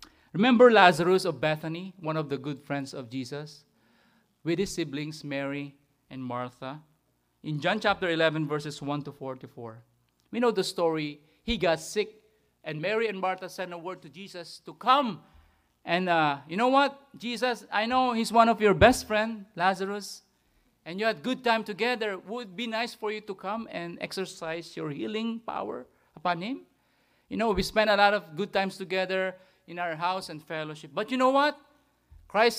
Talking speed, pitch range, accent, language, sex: 185 wpm, 150-225 Hz, Filipino, English, male